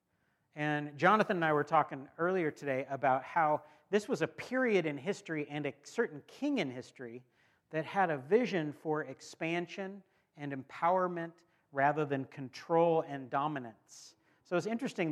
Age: 40-59